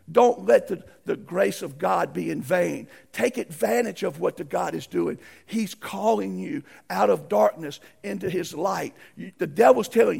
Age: 50-69